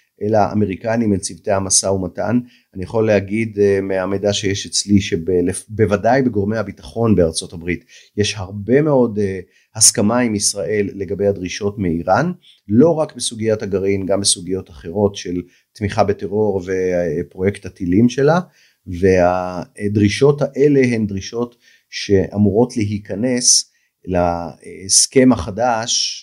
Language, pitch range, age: Hebrew, 95-120 Hz, 30-49